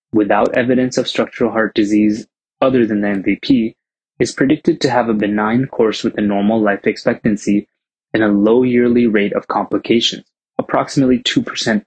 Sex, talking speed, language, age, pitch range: male, 155 wpm, English, 20-39, 105-125 Hz